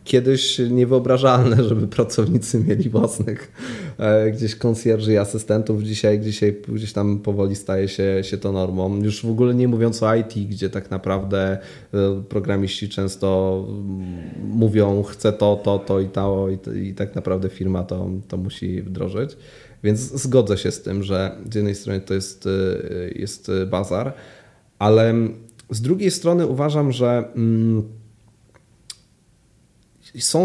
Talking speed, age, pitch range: 140 wpm, 20-39, 100-125 Hz